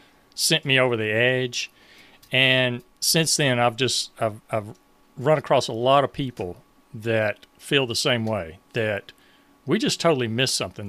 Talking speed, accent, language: 160 wpm, American, English